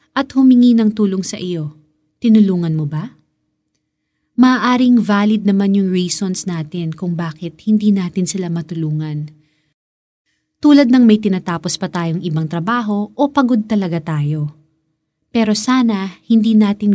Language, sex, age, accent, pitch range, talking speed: Filipino, female, 30-49, native, 160-215 Hz, 130 wpm